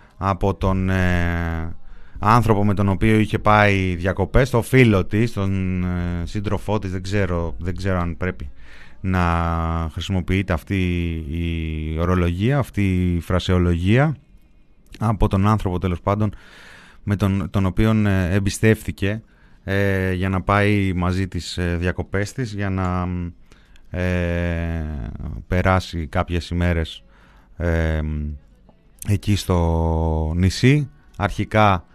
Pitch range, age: 85-100 Hz, 30-49